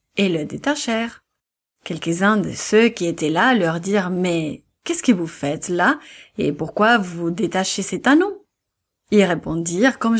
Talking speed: 155 wpm